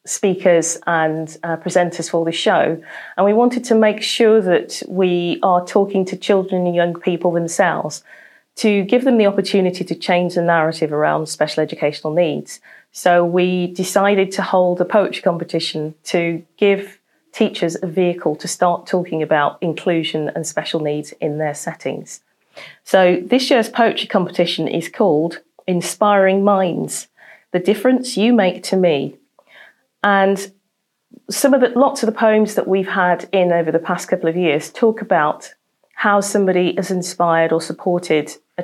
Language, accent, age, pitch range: English, British, 30-49, 165-200 Hz